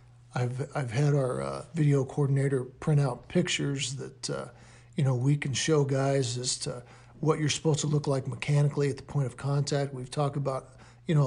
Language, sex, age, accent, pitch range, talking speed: English, male, 50-69, American, 135-165 Hz, 195 wpm